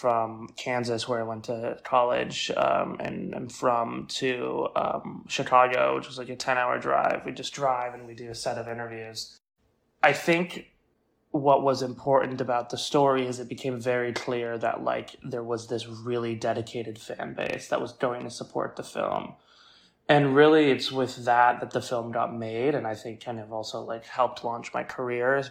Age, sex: 20-39, male